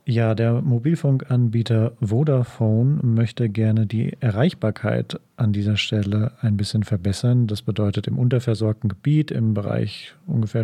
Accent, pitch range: German, 105-130 Hz